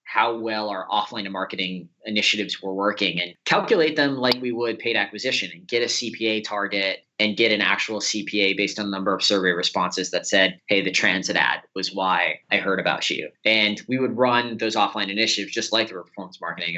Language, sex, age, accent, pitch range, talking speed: English, male, 20-39, American, 100-120 Hz, 205 wpm